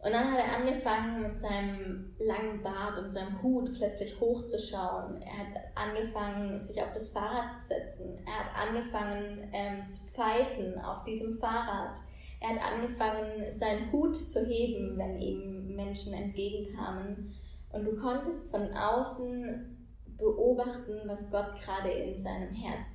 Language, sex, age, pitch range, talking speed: German, female, 20-39, 195-230 Hz, 145 wpm